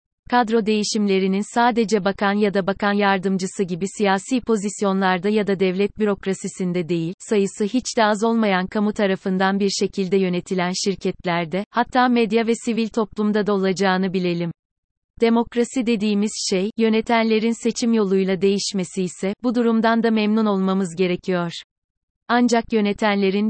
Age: 30-49